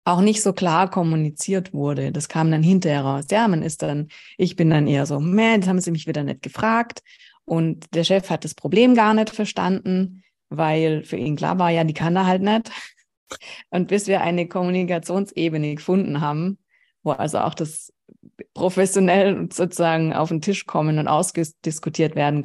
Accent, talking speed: German, 180 wpm